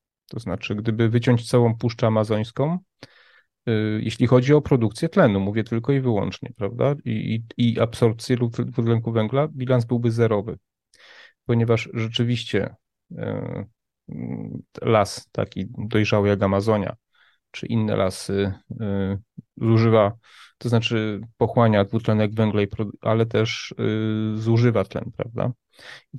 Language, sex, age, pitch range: Polish, male, 30-49, 105-120 Hz